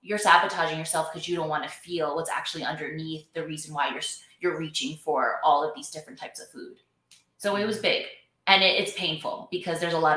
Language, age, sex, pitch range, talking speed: English, 20-39, female, 155-165 Hz, 210 wpm